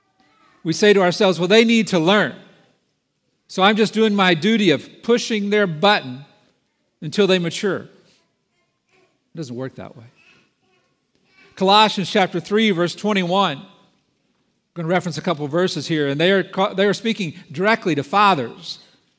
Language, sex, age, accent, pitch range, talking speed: English, male, 50-69, American, 155-195 Hz, 160 wpm